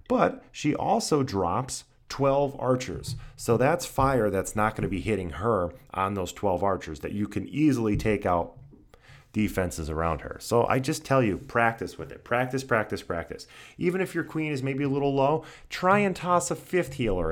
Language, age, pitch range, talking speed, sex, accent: English, 30-49, 95-135 Hz, 190 wpm, male, American